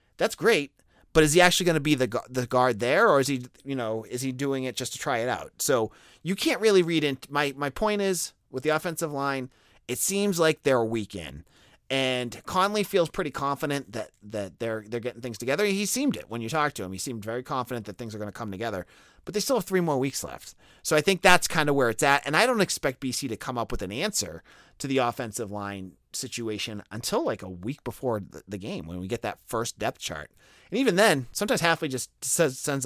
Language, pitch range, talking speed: English, 110-155 Hz, 240 wpm